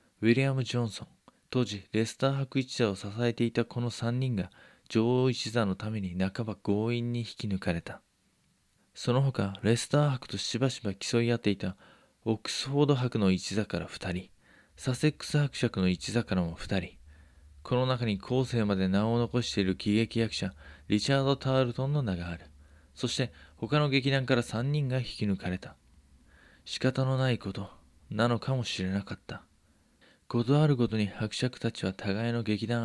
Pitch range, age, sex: 100-125 Hz, 20-39, male